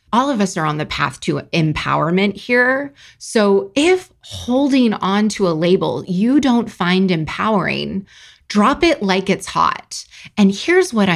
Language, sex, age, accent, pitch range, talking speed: English, female, 20-39, American, 175-230 Hz, 155 wpm